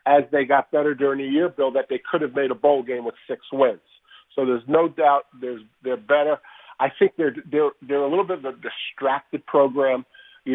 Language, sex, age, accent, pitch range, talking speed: English, male, 50-69, American, 130-160 Hz, 210 wpm